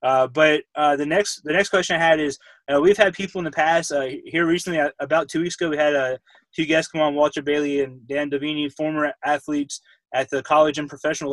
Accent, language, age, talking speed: American, English, 20-39, 245 wpm